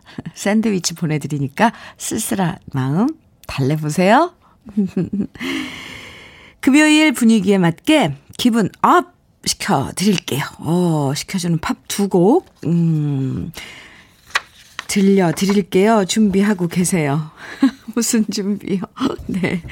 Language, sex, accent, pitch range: Korean, female, native, 165-230 Hz